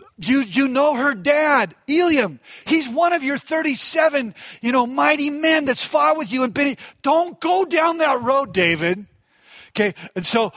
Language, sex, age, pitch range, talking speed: English, male, 40-59, 190-250 Hz, 175 wpm